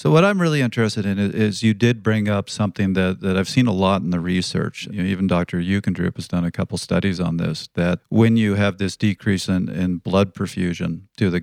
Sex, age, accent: male, 40-59, American